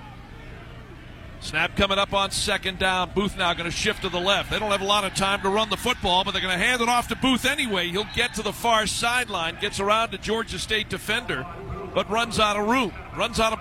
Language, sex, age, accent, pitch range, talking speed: English, male, 50-69, American, 185-215 Hz, 240 wpm